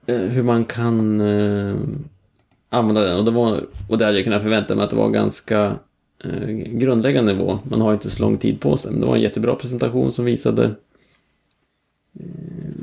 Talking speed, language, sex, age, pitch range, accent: 175 wpm, Swedish, male, 30-49, 100-115 Hz, Norwegian